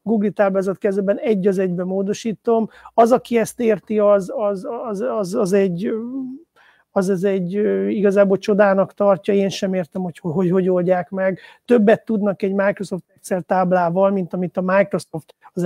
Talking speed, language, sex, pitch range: 165 wpm, Hungarian, male, 185-220 Hz